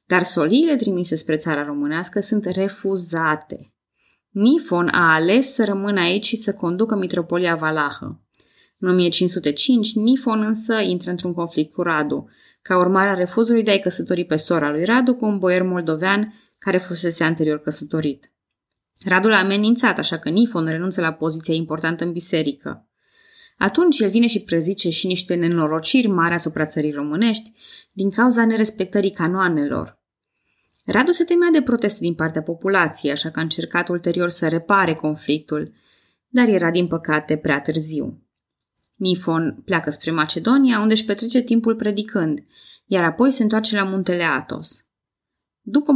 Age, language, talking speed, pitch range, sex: 20-39, Romanian, 150 wpm, 165-220 Hz, female